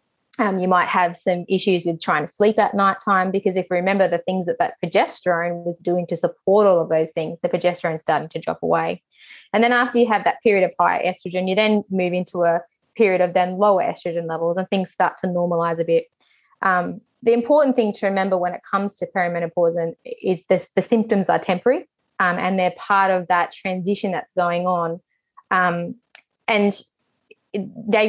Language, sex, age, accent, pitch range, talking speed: English, female, 20-39, Australian, 175-205 Hz, 200 wpm